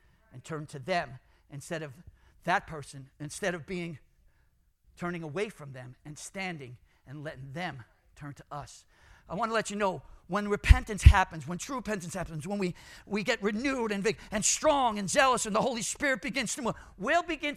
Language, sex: English, male